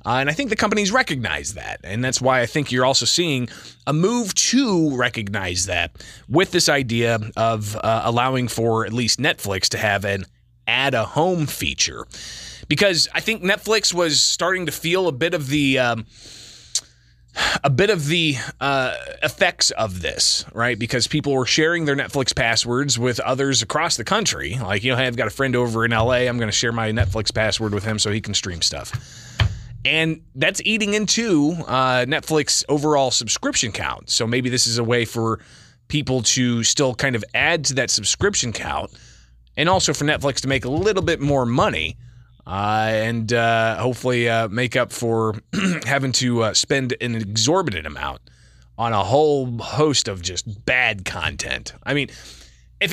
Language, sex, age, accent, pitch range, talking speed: English, male, 30-49, American, 110-150 Hz, 180 wpm